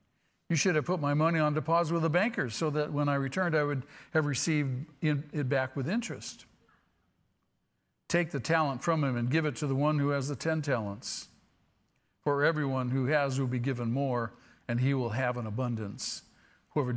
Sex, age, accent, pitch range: male, 60-79, American, 135-170 Hz